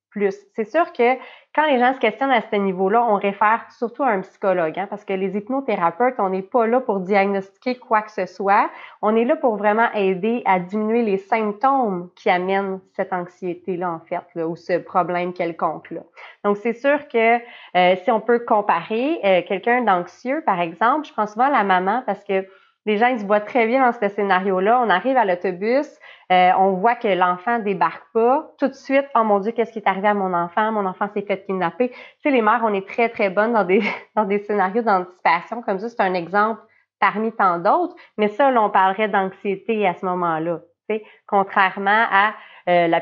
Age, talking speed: 30-49, 215 wpm